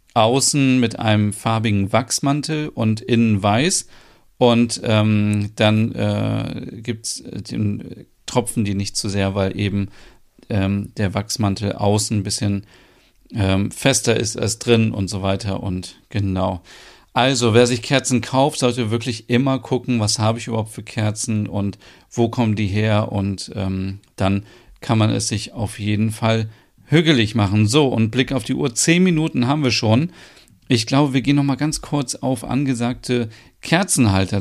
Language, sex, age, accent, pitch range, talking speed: German, male, 40-59, German, 105-125 Hz, 155 wpm